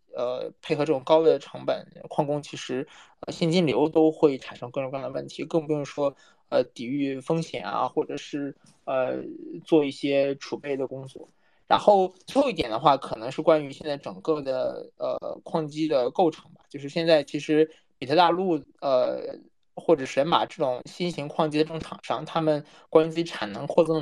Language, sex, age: English, male, 20-39